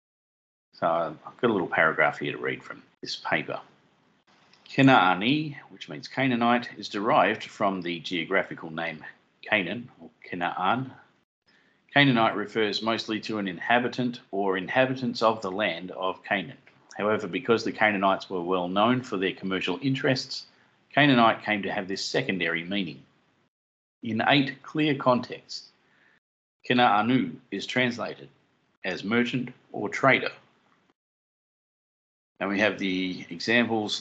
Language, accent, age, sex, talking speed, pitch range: English, Australian, 40-59, male, 125 wpm, 95-125 Hz